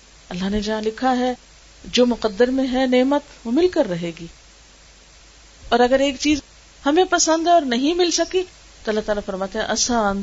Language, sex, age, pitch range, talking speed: Urdu, female, 40-59, 205-270 Hz, 190 wpm